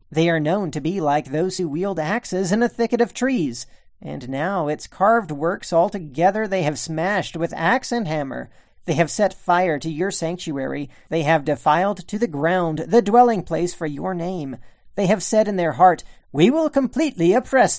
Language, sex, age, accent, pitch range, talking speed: English, male, 40-59, American, 165-220 Hz, 190 wpm